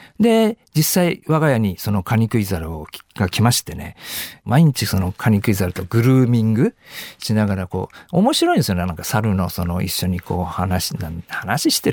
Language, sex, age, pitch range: Japanese, male, 50-69, 100-145 Hz